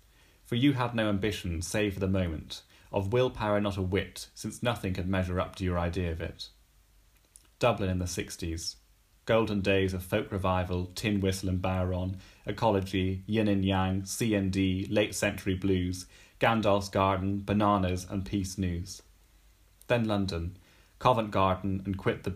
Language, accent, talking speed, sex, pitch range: English, British, 155 wpm, male, 90-105 Hz